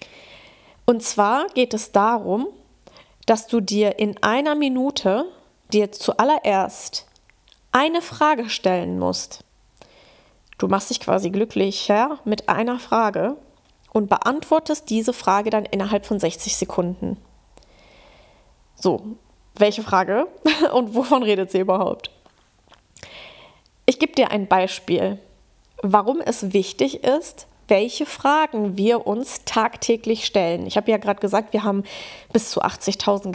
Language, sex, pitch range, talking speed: German, female, 205-265 Hz, 120 wpm